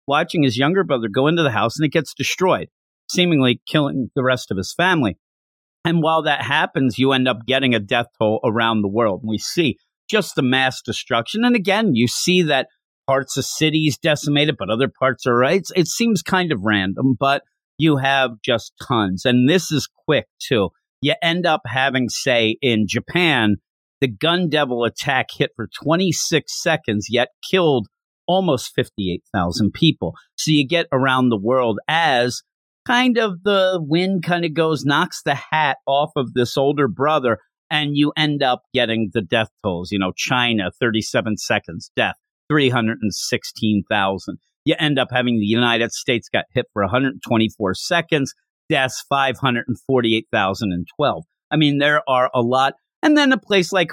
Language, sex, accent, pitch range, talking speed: English, male, American, 115-160 Hz, 165 wpm